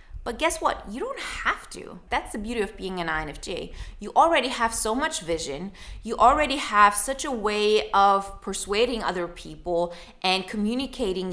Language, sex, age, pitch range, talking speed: English, female, 20-39, 195-250 Hz, 170 wpm